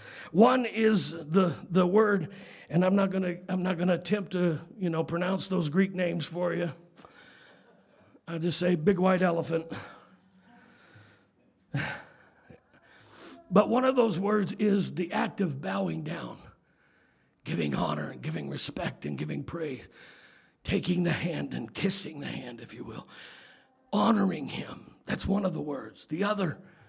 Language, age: English, 50-69